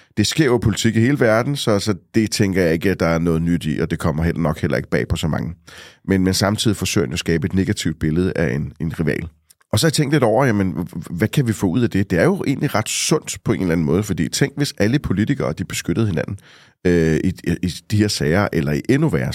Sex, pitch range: male, 85-115 Hz